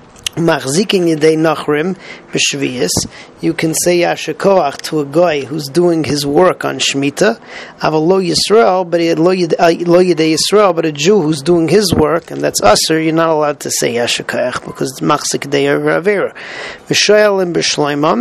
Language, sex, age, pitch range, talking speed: English, male, 40-59, 150-175 Hz, 110 wpm